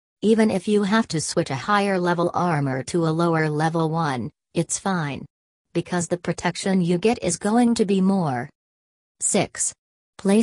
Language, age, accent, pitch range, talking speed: English, 40-59, American, 140-180 Hz, 165 wpm